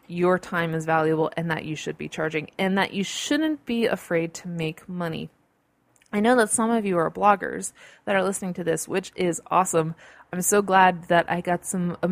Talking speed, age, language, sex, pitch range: 215 wpm, 20-39, English, female, 160-195 Hz